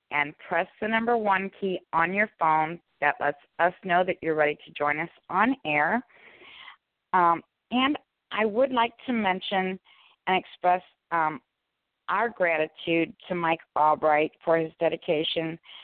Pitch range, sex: 160-195 Hz, female